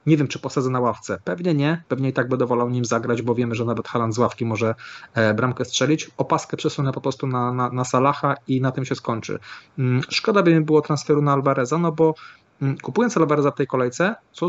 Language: Polish